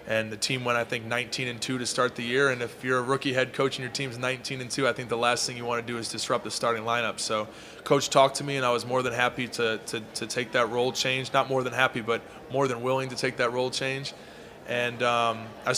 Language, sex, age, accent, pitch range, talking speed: English, male, 20-39, American, 115-130 Hz, 280 wpm